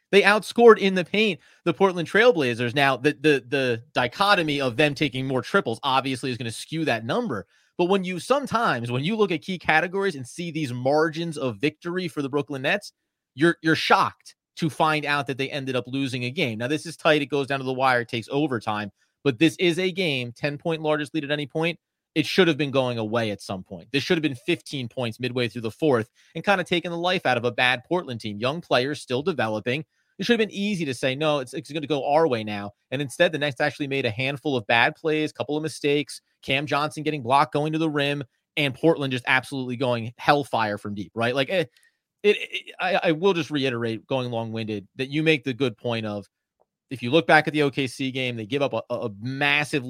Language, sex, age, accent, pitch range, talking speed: English, male, 30-49, American, 125-165 Hz, 235 wpm